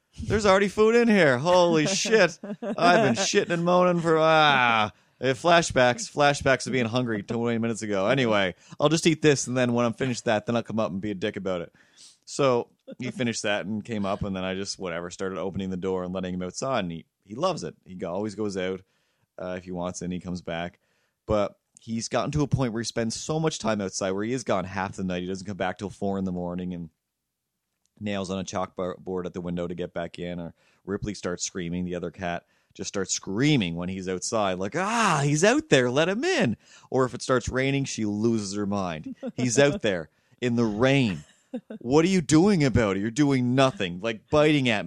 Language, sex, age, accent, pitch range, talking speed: English, male, 30-49, American, 95-145 Hz, 225 wpm